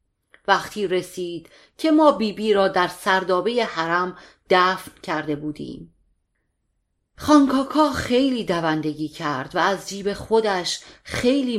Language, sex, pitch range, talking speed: Persian, female, 165-215 Hz, 115 wpm